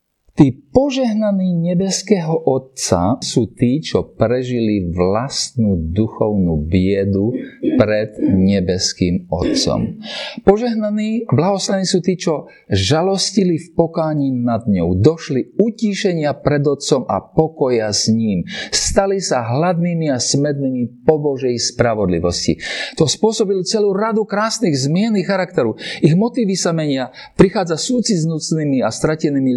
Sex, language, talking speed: male, Slovak, 110 wpm